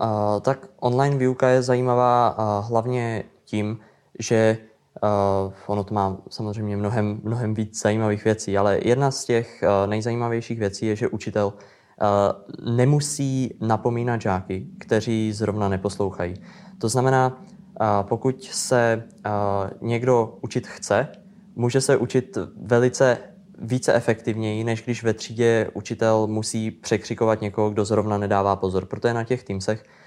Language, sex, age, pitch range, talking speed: Czech, male, 20-39, 105-115 Hz, 140 wpm